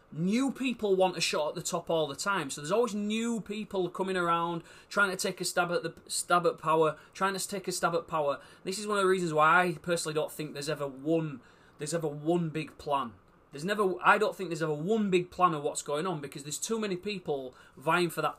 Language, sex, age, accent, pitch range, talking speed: English, male, 30-49, British, 140-180 Hz, 250 wpm